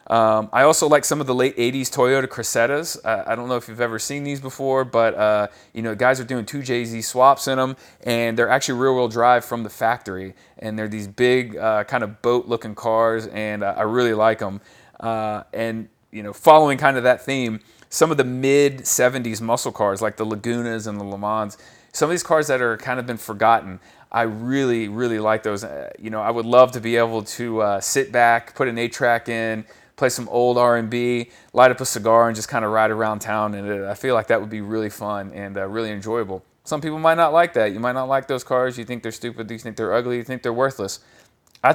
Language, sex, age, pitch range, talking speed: English, male, 30-49, 110-130 Hz, 235 wpm